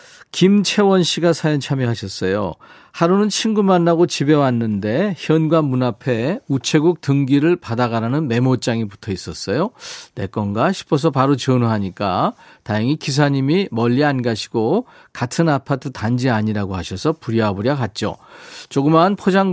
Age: 40-59